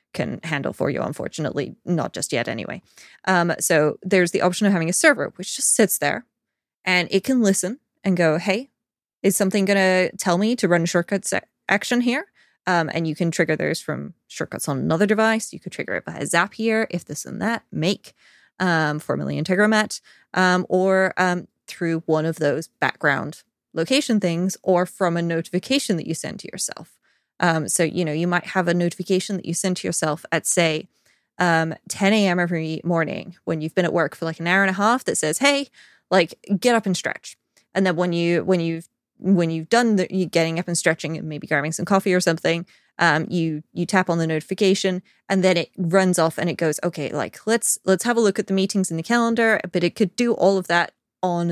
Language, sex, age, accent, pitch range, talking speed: English, female, 20-39, American, 165-195 Hz, 215 wpm